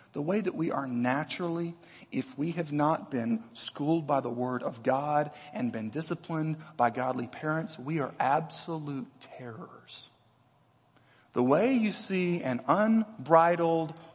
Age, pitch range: 40-59, 140-215 Hz